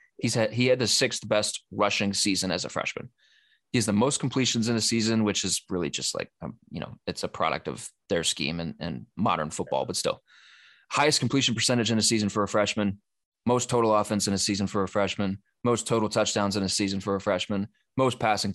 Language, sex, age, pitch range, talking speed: English, male, 20-39, 100-125 Hz, 220 wpm